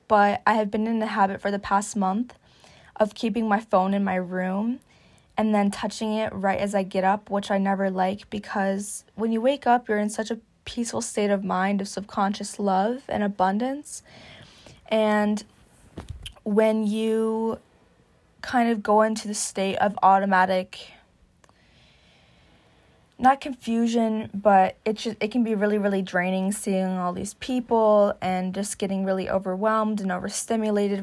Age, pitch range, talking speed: 20-39, 195-220 Hz, 155 wpm